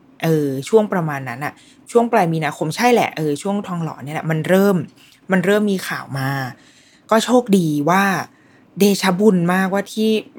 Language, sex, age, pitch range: Thai, female, 20-39, 150-195 Hz